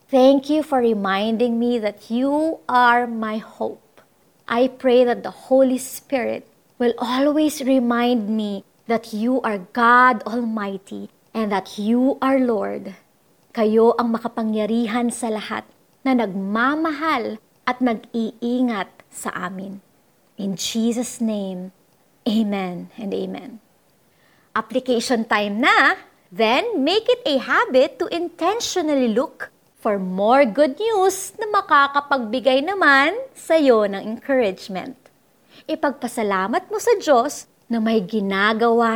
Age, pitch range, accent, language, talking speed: 30-49, 215-280 Hz, native, Filipino, 115 wpm